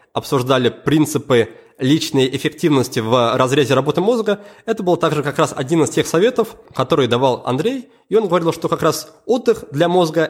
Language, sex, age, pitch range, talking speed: Russian, male, 20-39, 130-180 Hz, 170 wpm